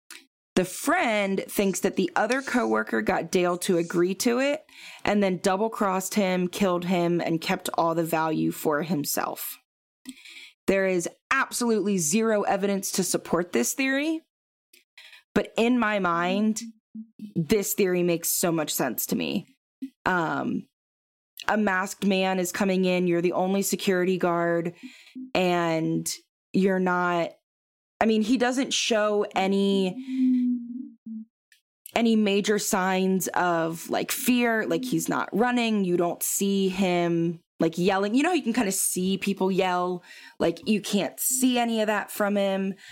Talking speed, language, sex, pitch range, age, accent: 145 wpm, English, female, 175-220 Hz, 20-39, American